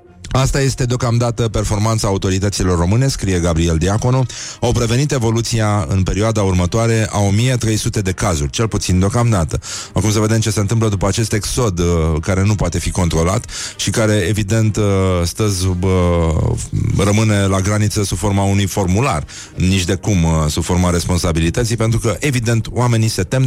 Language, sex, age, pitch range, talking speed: Romanian, male, 30-49, 90-110 Hz, 150 wpm